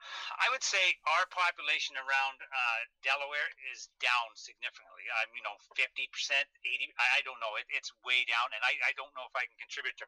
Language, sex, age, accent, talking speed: English, male, 40-59, American, 195 wpm